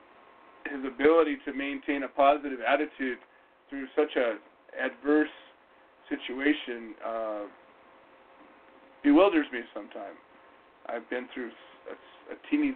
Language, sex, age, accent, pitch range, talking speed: English, male, 40-59, American, 125-150 Hz, 105 wpm